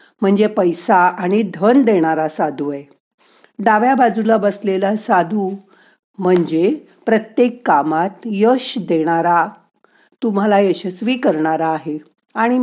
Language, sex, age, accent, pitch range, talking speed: Marathi, female, 50-69, native, 170-230 Hz, 100 wpm